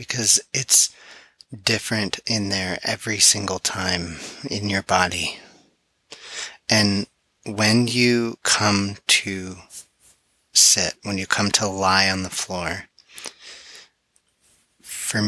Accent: American